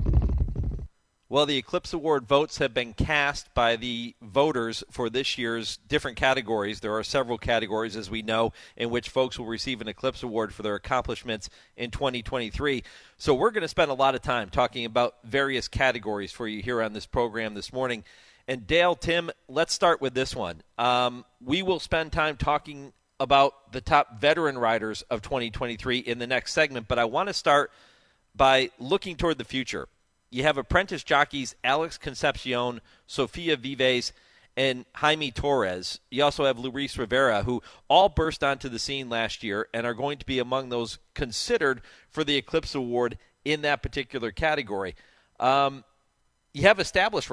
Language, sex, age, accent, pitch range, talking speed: English, male, 40-59, American, 115-140 Hz, 170 wpm